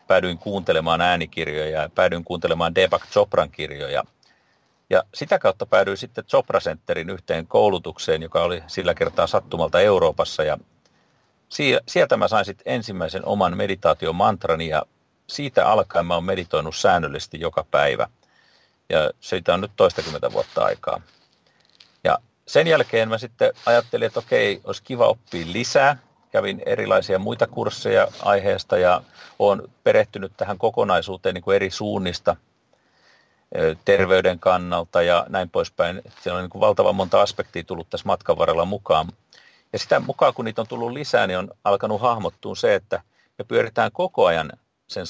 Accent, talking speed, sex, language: native, 145 wpm, male, Finnish